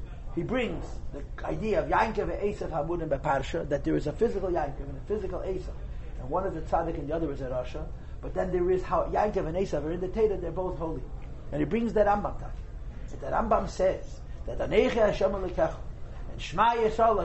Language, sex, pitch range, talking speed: English, male, 165-230 Hz, 205 wpm